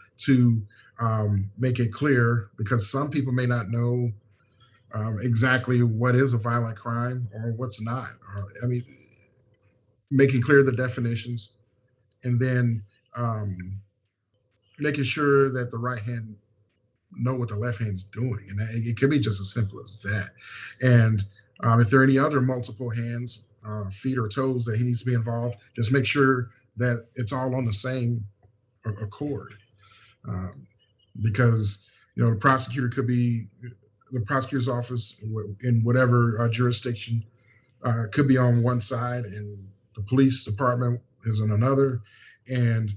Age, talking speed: 40-59, 155 wpm